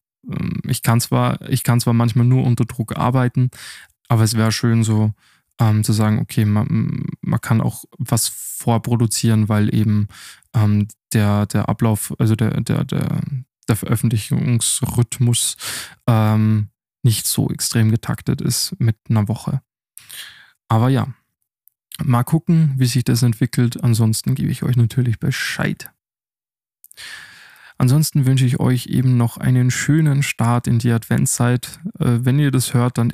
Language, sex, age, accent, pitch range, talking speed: German, male, 20-39, German, 115-135 Hz, 140 wpm